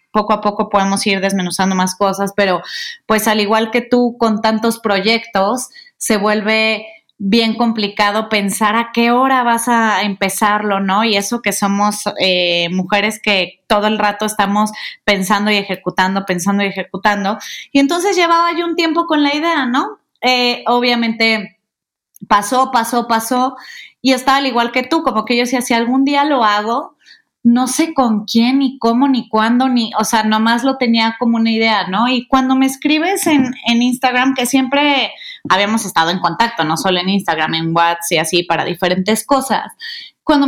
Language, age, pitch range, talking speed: Spanish, 30-49, 200-255 Hz, 175 wpm